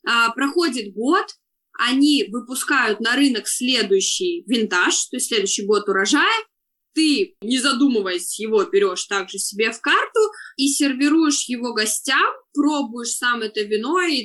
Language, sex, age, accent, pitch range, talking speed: Russian, female, 20-39, native, 215-335 Hz, 135 wpm